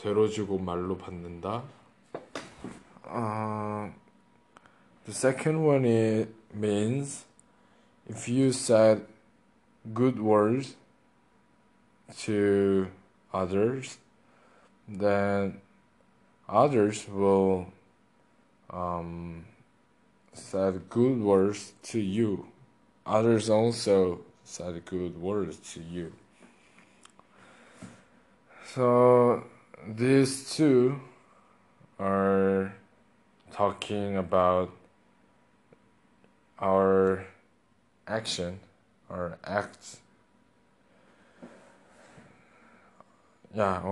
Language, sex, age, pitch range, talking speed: English, male, 20-39, 95-115 Hz, 55 wpm